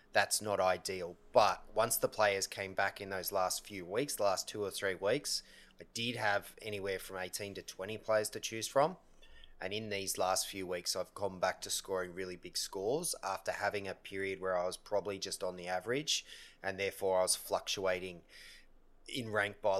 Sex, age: male, 20-39